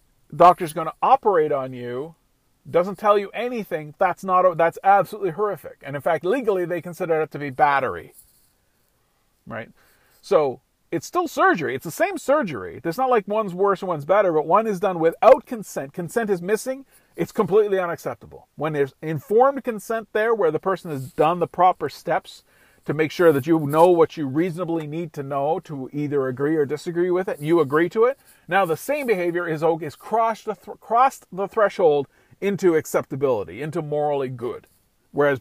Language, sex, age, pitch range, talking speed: English, male, 40-59, 155-210 Hz, 185 wpm